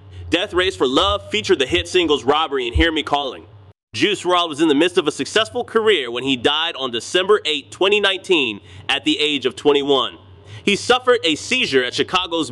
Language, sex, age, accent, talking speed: English, male, 30-49, American, 195 wpm